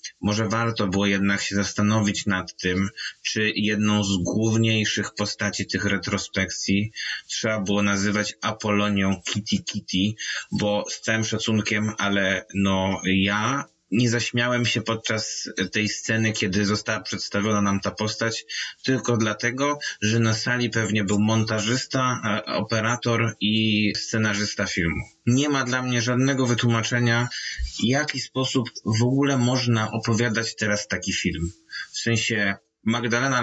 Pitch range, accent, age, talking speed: 105-125 Hz, native, 20-39, 125 wpm